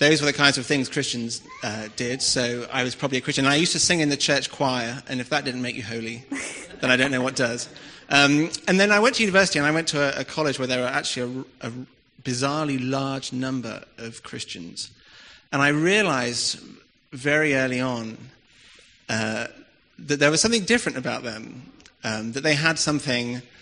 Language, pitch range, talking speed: English, 120-145 Hz, 205 wpm